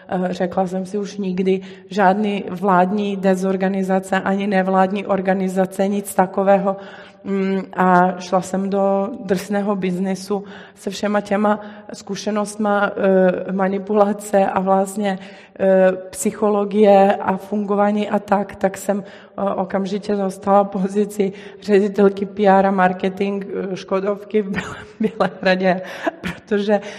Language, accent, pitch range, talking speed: Czech, native, 190-210 Hz, 100 wpm